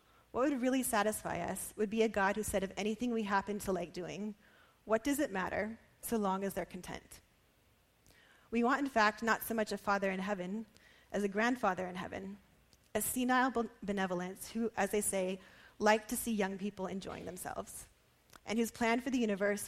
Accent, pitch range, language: American, 190-225 Hz, English